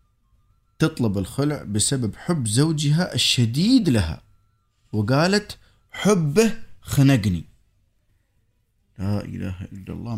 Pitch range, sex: 105-145 Hz, male